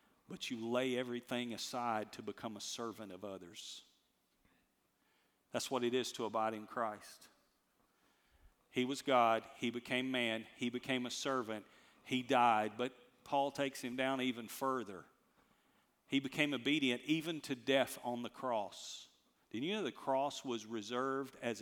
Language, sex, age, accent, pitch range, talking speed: English, male, 50-69, American, 120-150 Hz, 155 wpm